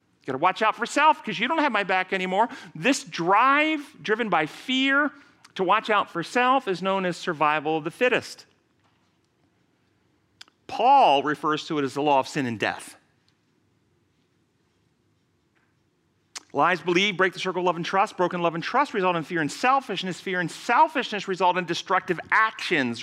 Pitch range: 170-230 Hz